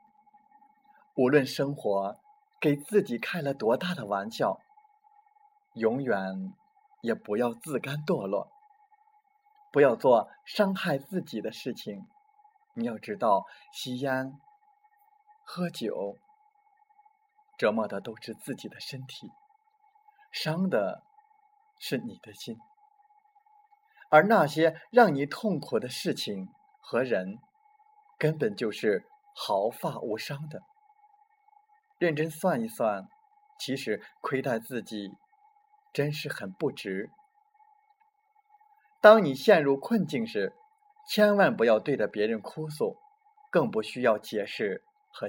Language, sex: Chinese, male